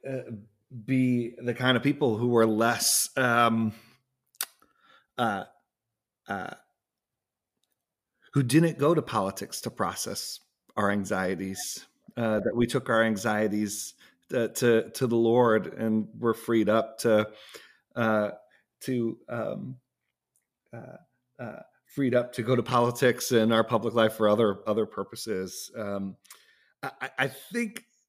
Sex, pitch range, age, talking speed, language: male, 105-120 Hz, 40-59, 130 wpm, English